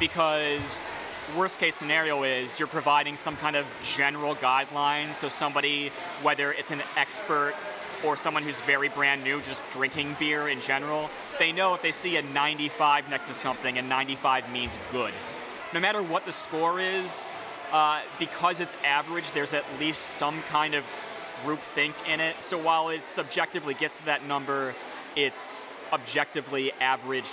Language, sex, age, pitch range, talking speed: English, male, 30-49, 135-155 Hz, 165 wpm